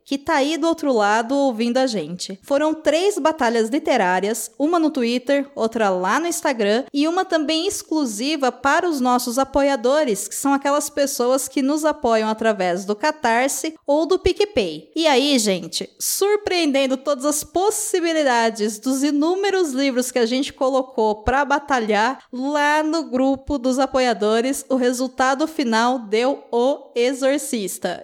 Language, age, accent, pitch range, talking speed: Portuguese, 20-39, Brazilian, 230-310 Hz, 145 wpm